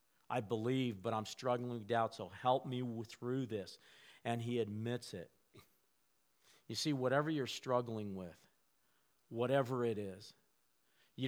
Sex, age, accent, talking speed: male, 50-69, American, 140 wpm